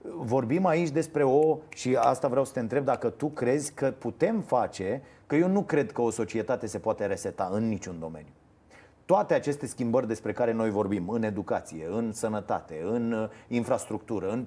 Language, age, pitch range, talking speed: Romanian, 30-49, 120-185 Hz, 180 wpm